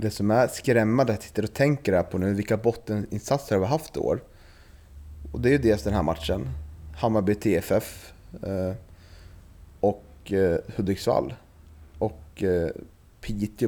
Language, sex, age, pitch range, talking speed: Swedish, male, 30-49, 95-115 Hz, 160 wpm